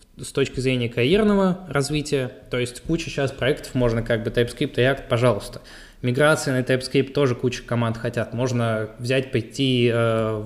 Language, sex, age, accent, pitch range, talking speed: Russian, male, 20-39, native, 115-135 Hz, 165 wpm